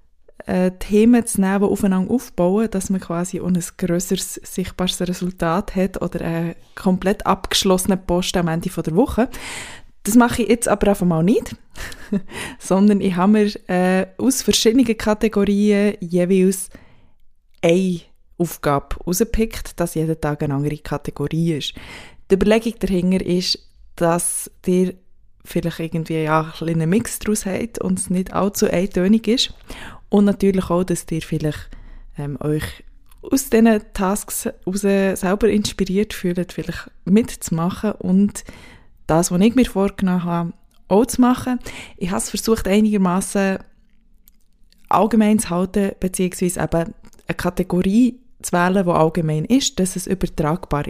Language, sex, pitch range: German, female, 170-210 Hz